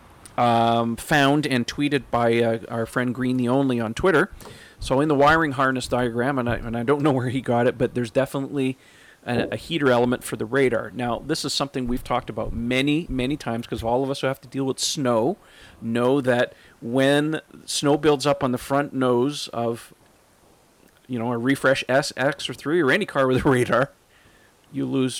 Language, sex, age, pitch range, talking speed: English, male, 40-59, 115-135 Hz, 200 wpm